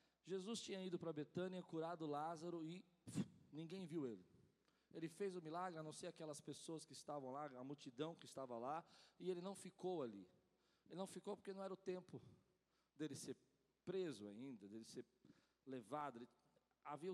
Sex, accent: male, Brazilian